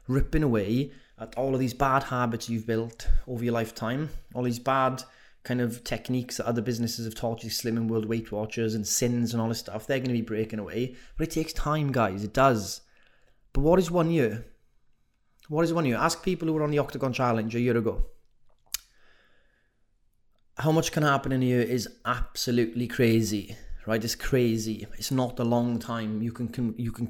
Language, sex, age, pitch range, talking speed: English, male, 20-39, 110-125 Hz, 195 wpm